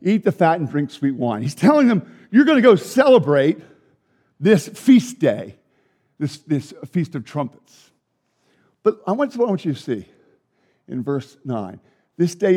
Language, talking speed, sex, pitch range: English, 160 wpm, male, 150-240 Hz